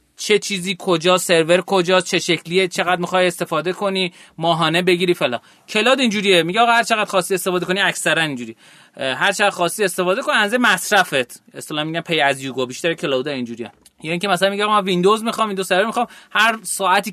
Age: 30-49